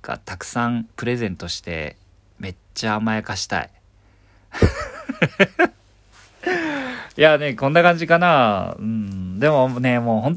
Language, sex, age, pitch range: Japanese, male, 40-59, 90-115 Hz